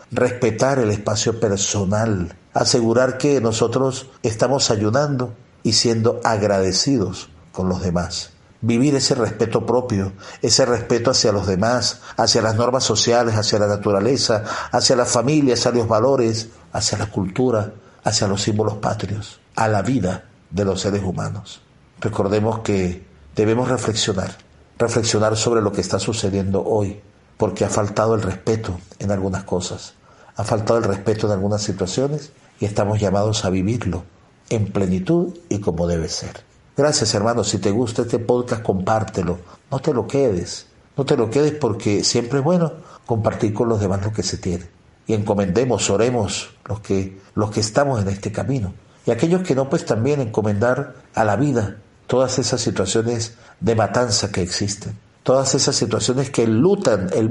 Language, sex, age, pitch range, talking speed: Spanish, male, 50-69, 100-125 Hz, 155 wpm